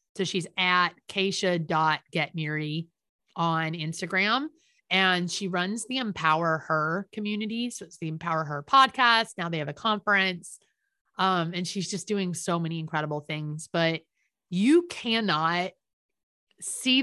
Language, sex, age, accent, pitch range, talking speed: English, female, 30-49, American, 175-220 Hz, 135 wpm